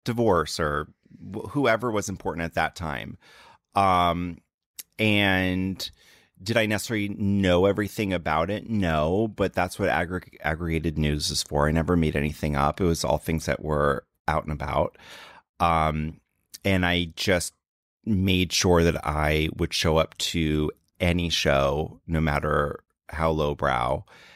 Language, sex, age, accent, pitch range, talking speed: English, male, 30-49, American, 75-90 Hz, 140 wpm